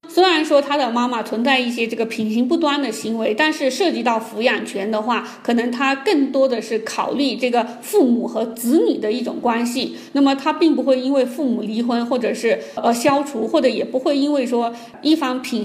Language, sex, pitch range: Chinese, female, 230-285 Hz